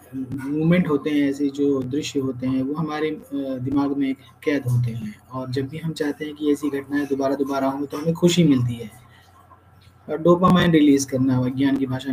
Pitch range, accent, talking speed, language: 120-155 Hz, native, 195 wpm, Hindi